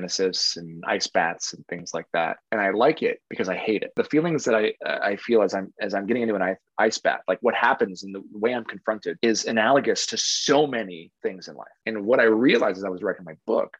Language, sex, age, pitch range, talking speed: English, male, 20-39, 95-125 Hz, 250 wpm